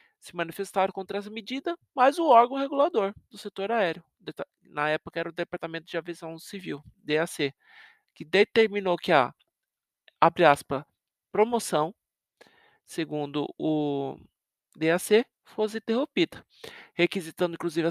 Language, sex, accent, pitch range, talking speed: Portuguese, male, Brazilian, 170-250 Hz, 115 wpm